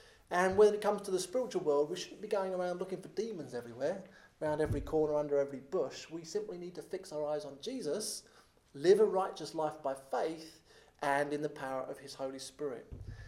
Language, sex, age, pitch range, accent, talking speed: English, male, 30-49, 135-180 Hz, British, 210 wpm